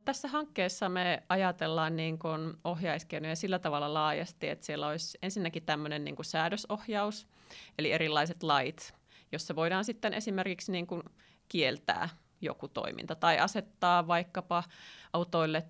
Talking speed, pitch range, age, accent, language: 125 wpm, 155-185 Hz, 30-49, native, Finnish